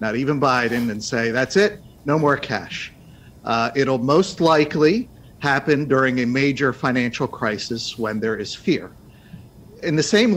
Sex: male